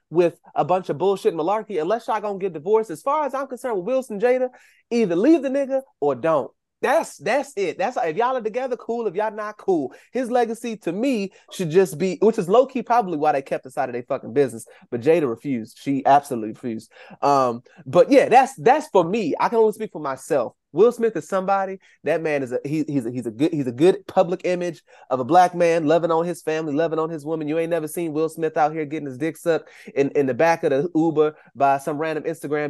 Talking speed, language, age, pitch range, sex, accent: 240 wpm, English, 20-39, 150-205 Hz, male, American